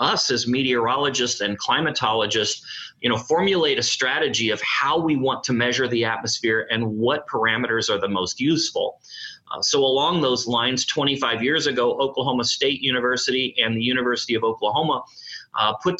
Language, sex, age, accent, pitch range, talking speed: English, male, 30-49, American, 115-130 Hz, 160 wpm